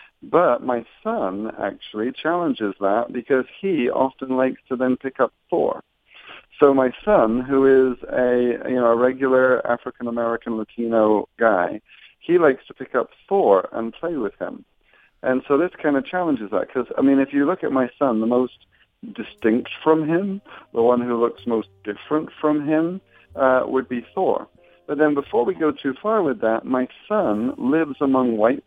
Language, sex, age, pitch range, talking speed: English, male, 50-69, 110-140 Hz, 180 wpm